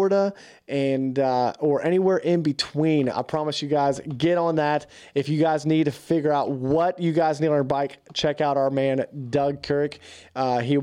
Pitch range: 125-155 Hz